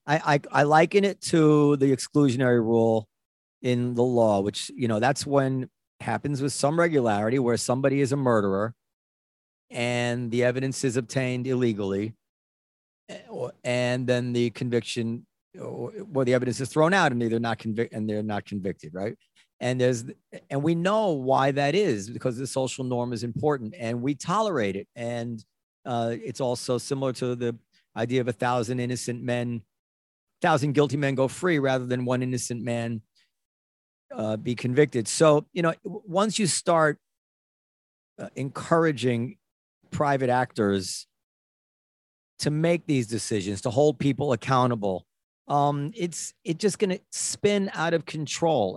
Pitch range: 120-155 Hz